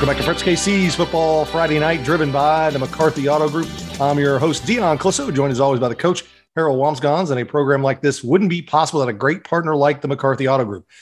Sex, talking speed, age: male, 240 wpm, 40-59